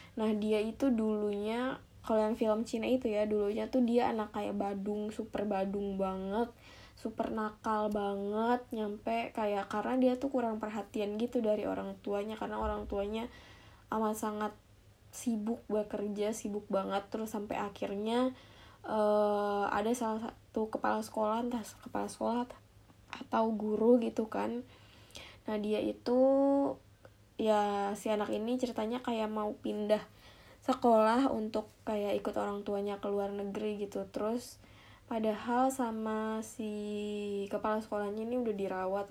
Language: Indonesian